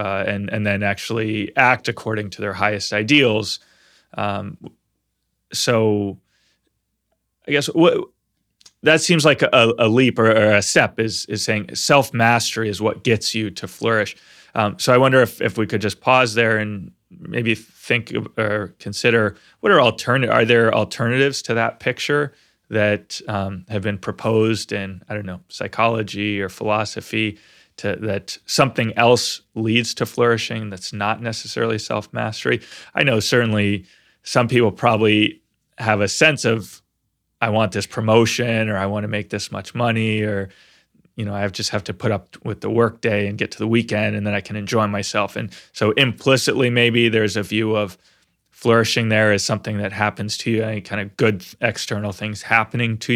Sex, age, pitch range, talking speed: male, 20-39, 105-115 Hz, 175 wpm